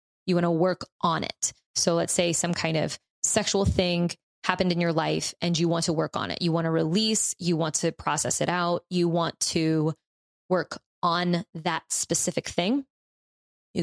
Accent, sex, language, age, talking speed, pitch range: American, female, English, 20-39, 190 wpm, 170-190 Hz